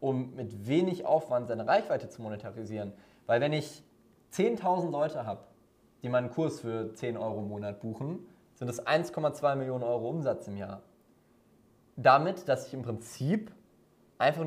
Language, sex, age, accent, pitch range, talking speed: German, male, 20-39, German, 115-135 Hz, 155 wpm